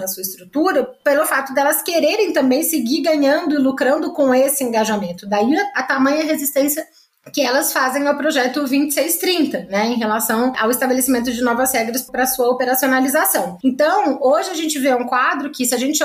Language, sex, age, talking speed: Portuguese, female, 20-39, 180 wpm